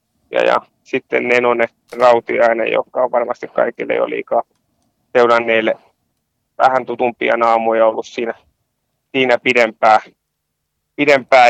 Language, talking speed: Finnish, 105 wpm